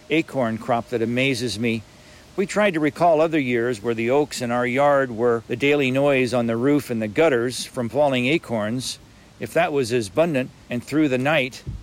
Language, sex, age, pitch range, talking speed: English, male, 50-69, 115-140 Hz, 200 wpm